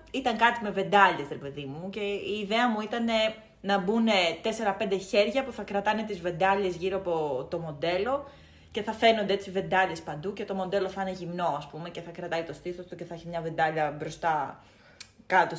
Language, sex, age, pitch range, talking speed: Greek, female, 20-39, 170-220 Hz, 200 wpm